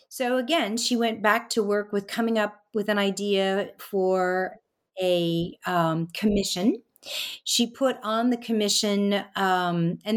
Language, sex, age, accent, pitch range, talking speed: English, female, 40-59, American, 185-230 Hz, 140 wpm